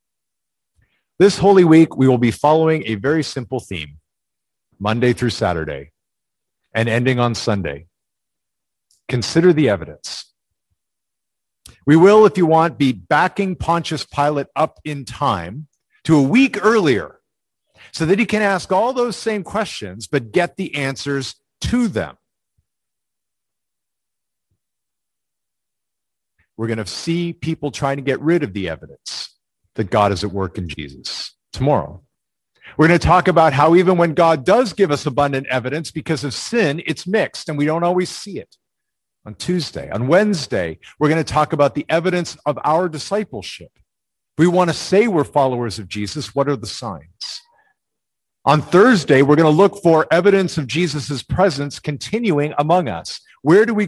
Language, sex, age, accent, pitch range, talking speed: English, male, 50-69, American, 120-175 Hz, 155 wpm